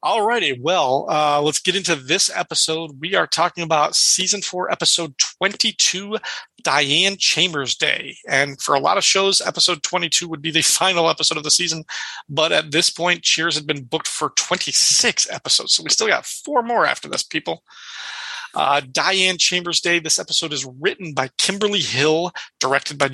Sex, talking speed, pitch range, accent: male, 175 wpm, 145-185 Hz, American